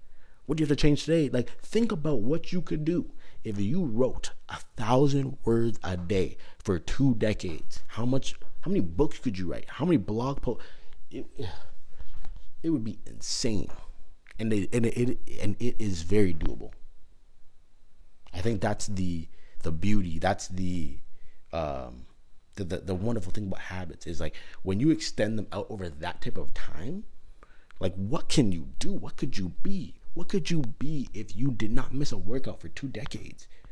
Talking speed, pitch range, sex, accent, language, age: 180 wpm, 90-135 Hz, male, American, English, 30-49